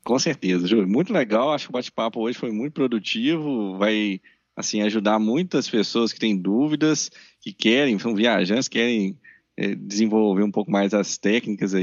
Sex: male